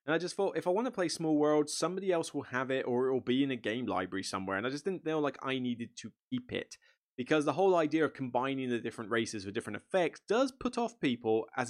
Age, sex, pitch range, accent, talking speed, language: 20-39, male, 115-150 Hz, British, 270 wpm, English